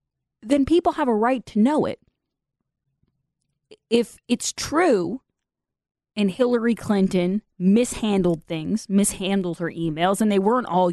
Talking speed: 125 wpm